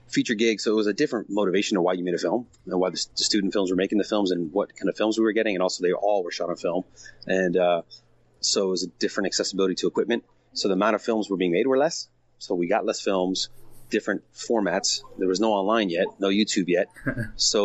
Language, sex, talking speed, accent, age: English, male, 255 wpm, American, 30-49